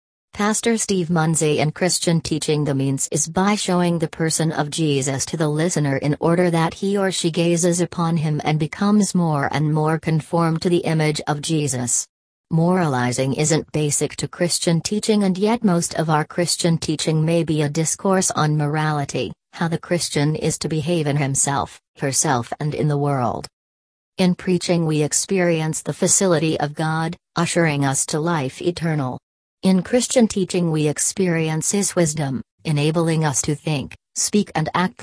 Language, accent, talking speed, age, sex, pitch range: English, American, 165 wpm, 40-59, female, 150-180 Hz